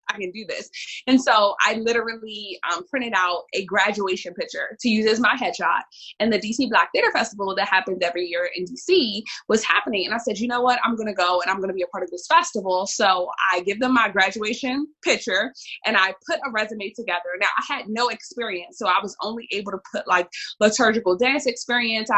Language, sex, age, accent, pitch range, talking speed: English, female, 20-39, American, 185-245 Hz, 220 wpm